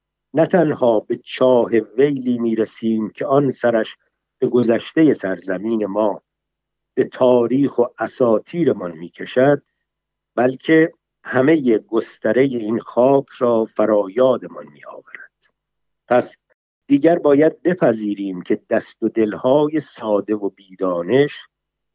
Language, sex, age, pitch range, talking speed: Persian, male, 50-69, 105-140 Hz, 110 wpm